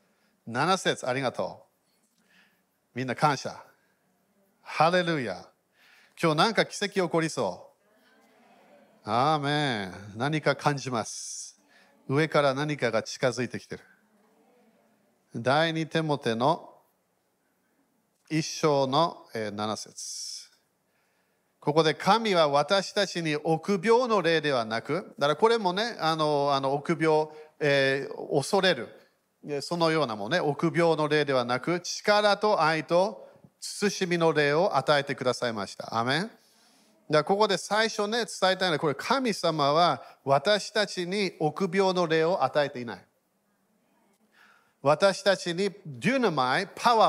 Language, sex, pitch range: Japanese, male, 145-200 Hz